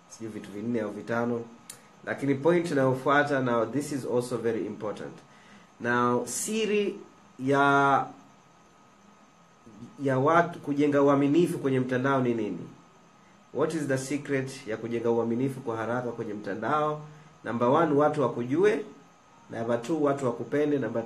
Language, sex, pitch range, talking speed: Swahili, male, 125-155 Hz, 130 wpm